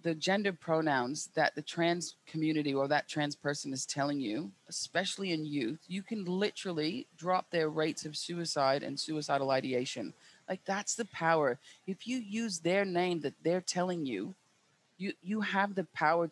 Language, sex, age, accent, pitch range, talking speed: English, female, 30-49, American, 150-185 Hz, 170 wpm